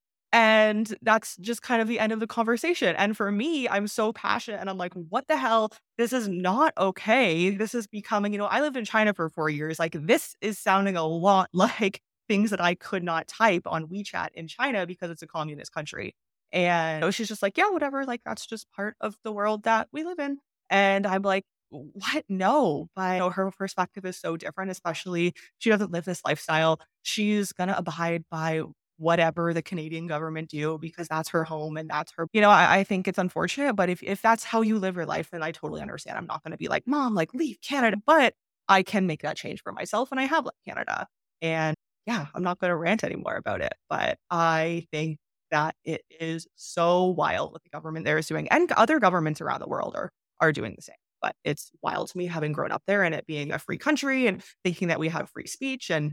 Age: 20-39